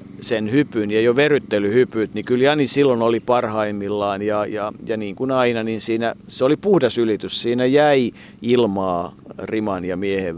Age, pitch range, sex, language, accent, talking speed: 50-69, 105-125 Hz, male, Finnish, native, 170 wpm